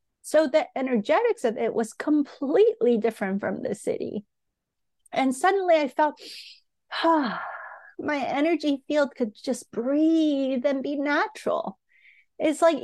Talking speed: 120 wpm